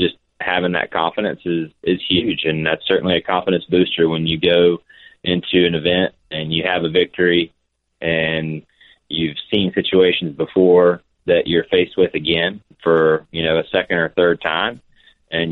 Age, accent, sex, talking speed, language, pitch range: 20-39, American, male, 160 wpm, English, 80-95 Hz